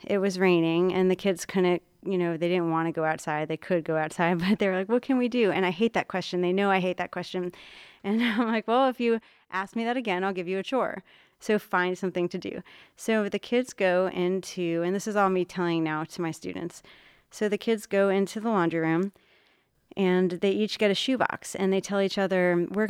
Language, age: English, 30-49